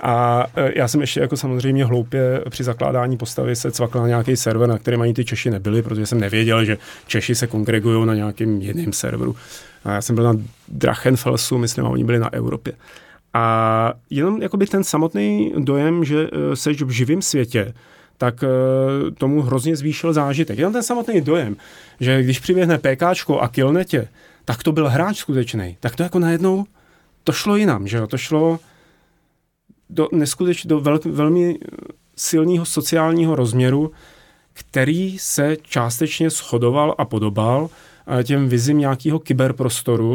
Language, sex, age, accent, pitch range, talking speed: Czech, male, 30-49, native, 120-155 Hz, 155 wpm